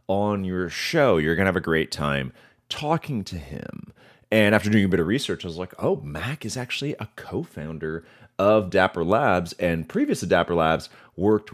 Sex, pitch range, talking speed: male, 85-130 Hz, 190 wpm